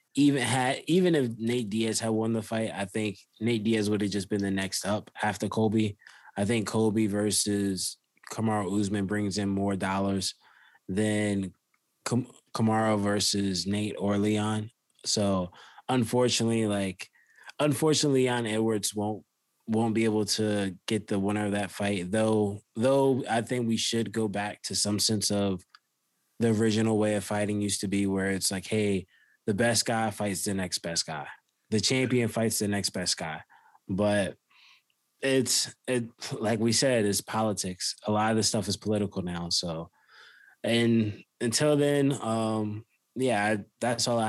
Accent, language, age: American, English, 20-39